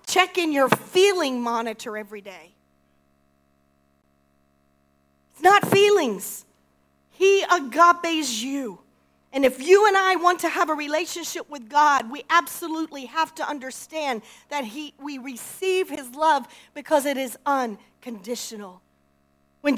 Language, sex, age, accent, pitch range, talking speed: English, female, 40-59, American, 235-330 Hz, 125 wpm